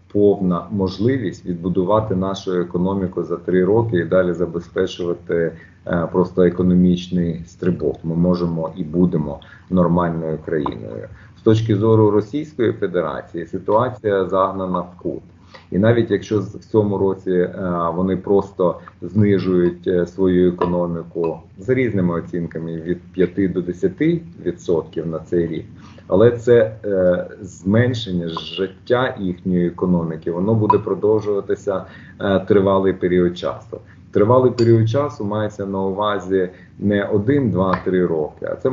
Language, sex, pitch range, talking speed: Ukrainian, male, 90-105 Hz, 120 wpm